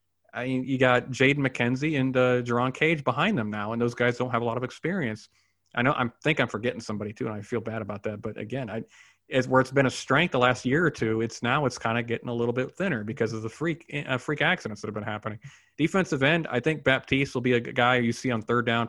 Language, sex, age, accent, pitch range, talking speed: English, male, 30-49, American, 115-140 Hz, 270 wpm